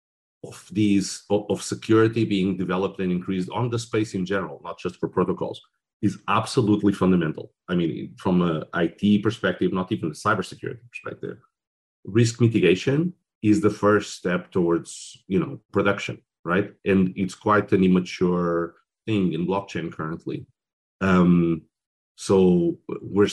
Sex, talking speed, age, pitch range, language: male, 140 wpm, 40-59, 85-100 Hz, English